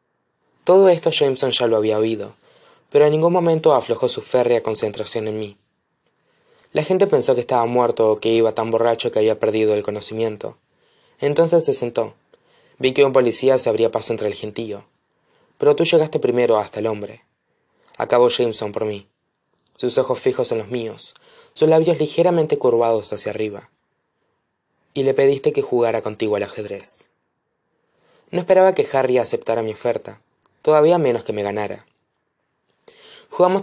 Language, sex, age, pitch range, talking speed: Spanish, male, 20-39, 115-190 Hz, 160 wpm